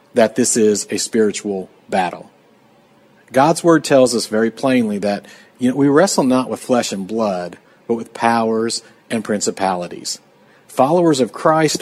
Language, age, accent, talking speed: English, 40-59, American, 140 wpm